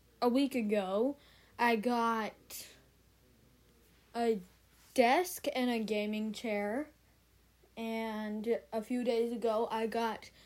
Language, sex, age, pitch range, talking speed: English, female, 10-29, 220-250 Hz, 105 wpm